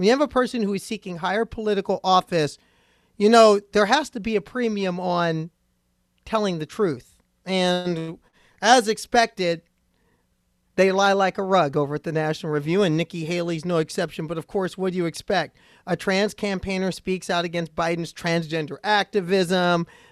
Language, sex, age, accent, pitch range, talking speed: English, male, 40-59, American, 175-225 Hz, 165 wpm